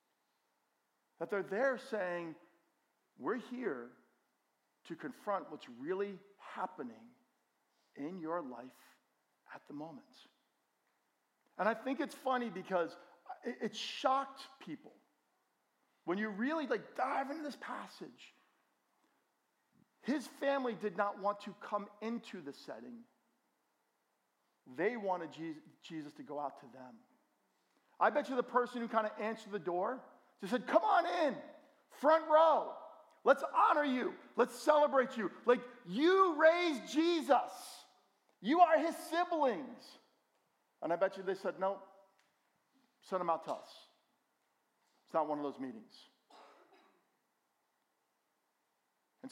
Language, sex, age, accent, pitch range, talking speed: English, male, 50-69, American, 195-285 Hz, 125 wpm